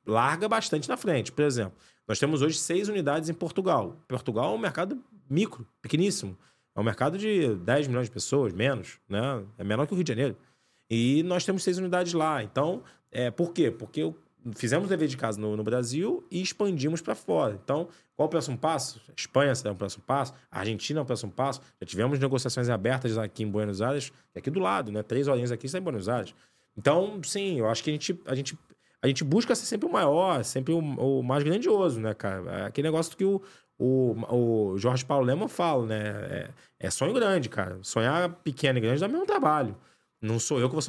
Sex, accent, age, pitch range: male, Brazilian, 20-39, 115-175 Hz